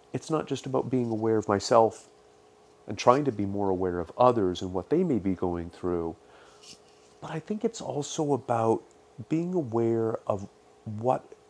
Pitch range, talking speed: 85-125 Hz, 170 wpm